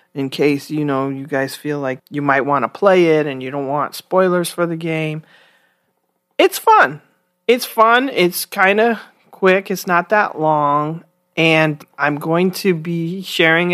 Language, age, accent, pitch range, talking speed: English, 40-59, American, 150-180 Hz, 175 wpm